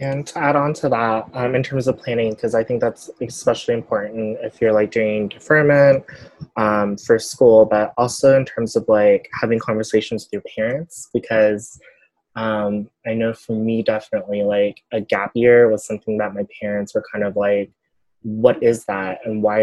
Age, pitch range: 20-39, 105-130 Hz